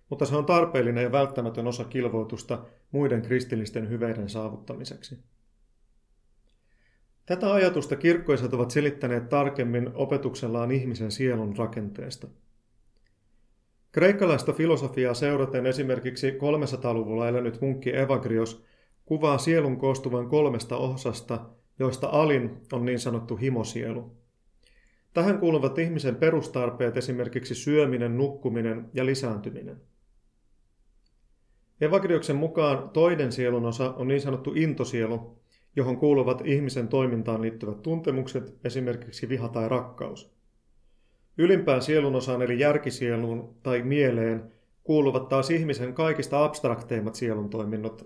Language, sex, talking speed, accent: Finnish, male, 100 wpm, native